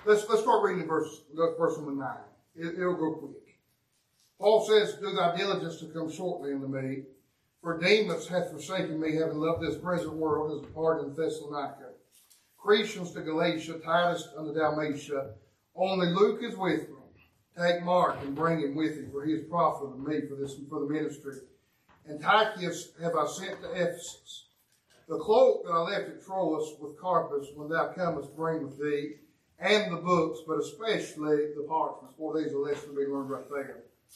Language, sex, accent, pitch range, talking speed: English, male, American, 150-180 Hz, 185 wpm